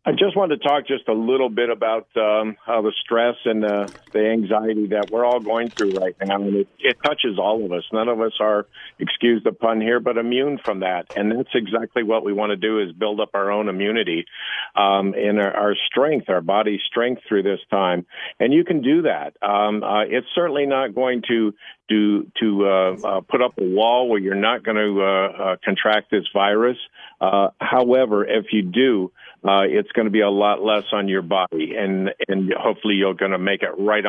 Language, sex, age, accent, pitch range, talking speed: English, male, 50-69, American, 100-120 Hz, 220 wpm